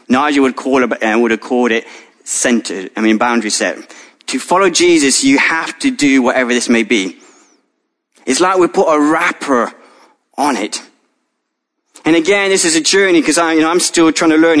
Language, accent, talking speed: English, British, 195 wpm